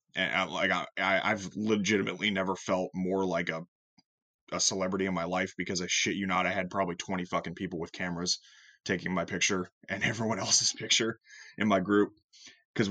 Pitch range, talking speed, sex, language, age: 90-105 Hz, 185 wpm, male, English, 20-39